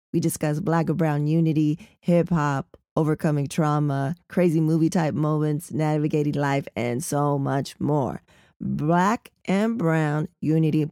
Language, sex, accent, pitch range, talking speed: English, female, American, 150-175 Hz, 130 wpm